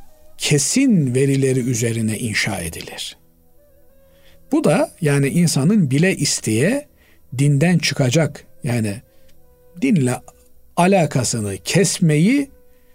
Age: 50-69